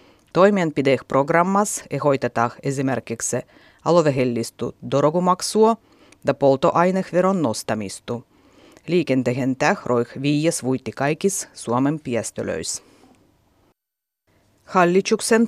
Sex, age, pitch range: female, 30-49, 135-190 Hz